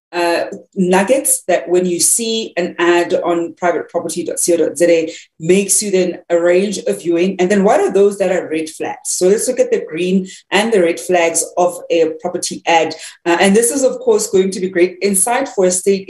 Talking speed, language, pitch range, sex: 195 wpm, English, 180-220 Hz, female